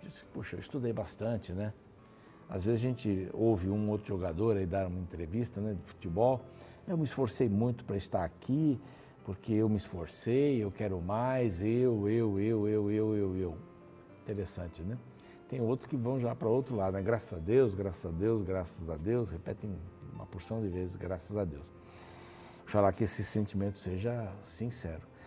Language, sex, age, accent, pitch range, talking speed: Portuguese, male, 60-79, Brazilian, 95-130 Hz, 180 wpm